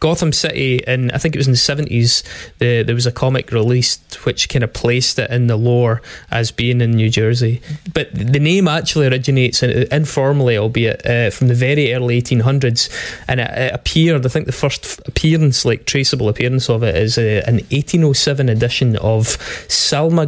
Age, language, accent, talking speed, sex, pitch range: 20-39, English, British, 190 wpm, male, 120-140 Hz